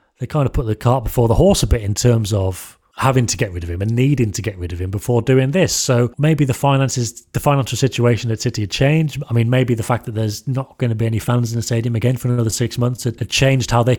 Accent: British